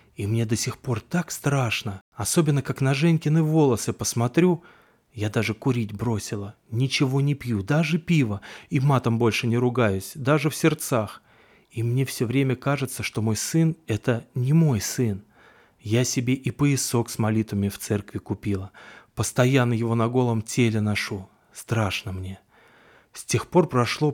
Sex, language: male, Russian